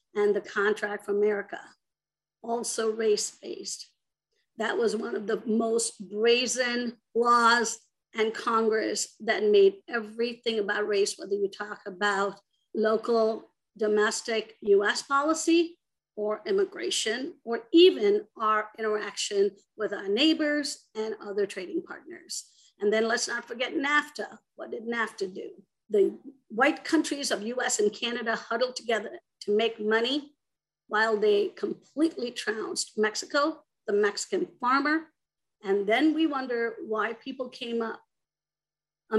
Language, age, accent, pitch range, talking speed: English, 50-69, American, 220-320 Hz, 125 wpm